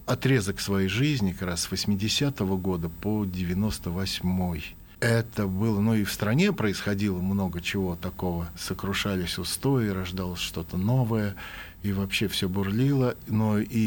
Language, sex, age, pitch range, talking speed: Russian, male, 50-69, 95-115 Hz, 135 wpm